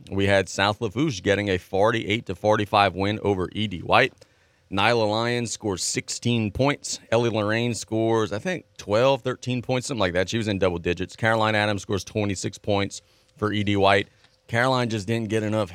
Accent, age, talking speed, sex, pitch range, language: American, 30-49, 180 wpm, male, 100-115 Hz, English